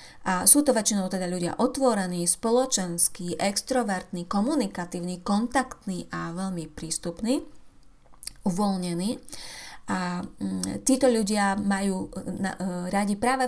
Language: Slovak